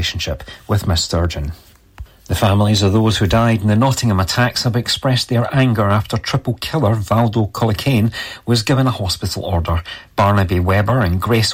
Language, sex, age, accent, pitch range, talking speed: English, male, 40-59, British, 95-120 Hz, 160 wpm